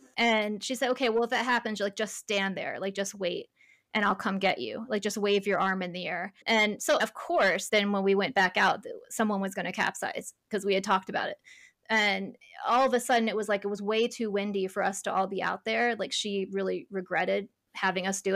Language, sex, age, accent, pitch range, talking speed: English, female, 20-39, American, 195-235 Hz, 250 wpm